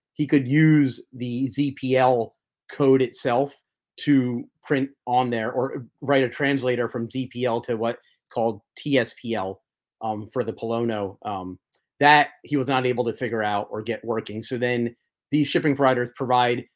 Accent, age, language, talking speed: American, 30-49, English, 155 wpm